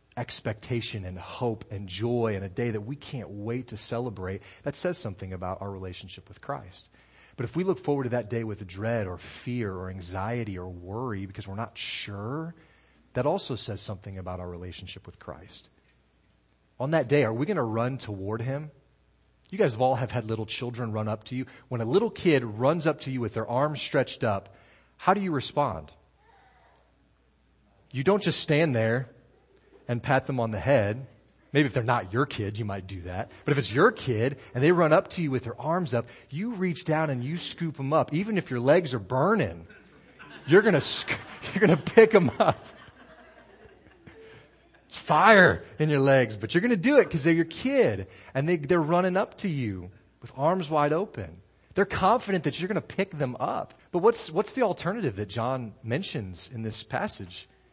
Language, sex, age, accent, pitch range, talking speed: English, male, 30-49, American, 105-150 Hz, 195 wpm